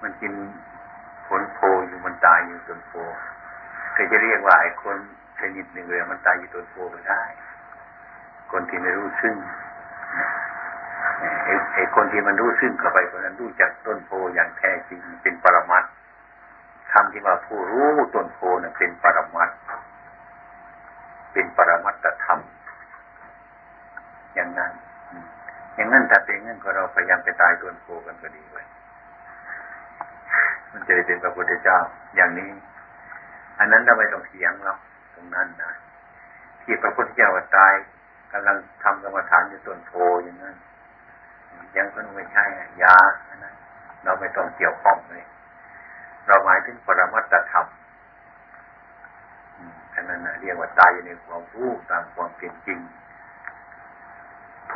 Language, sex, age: Thai, male, 60-79